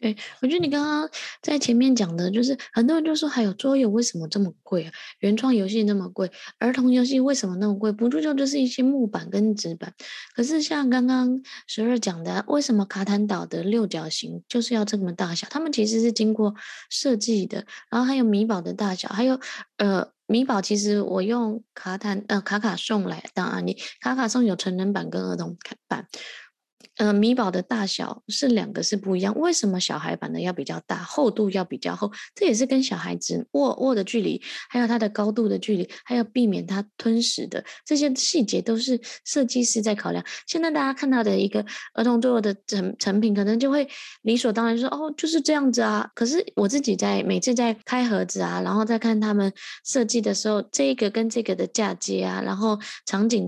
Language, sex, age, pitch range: Chinese, female, 20-39, 205-255 Hz